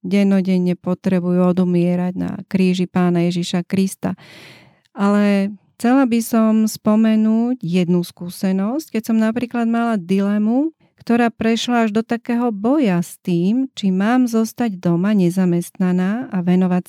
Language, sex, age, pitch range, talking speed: Slovak, female, 30-49, 185-225 Hz, 125 wpm